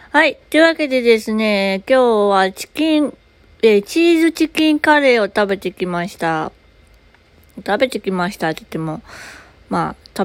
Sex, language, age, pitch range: female, Japanese, 20-39, 170-225 Hz